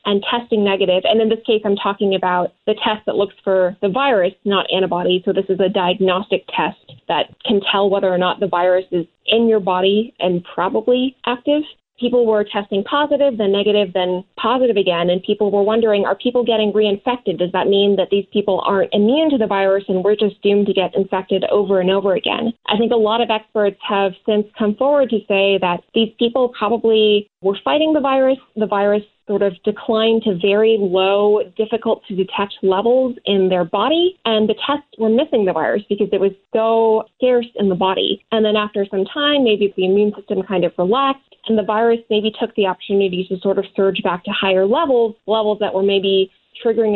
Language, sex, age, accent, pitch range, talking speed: English, female, 20-39, American, 195-230 Hz, 205 wpm